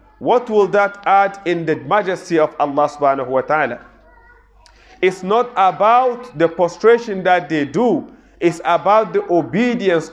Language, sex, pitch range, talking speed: English, male, 155-215 Hz, 140 wpm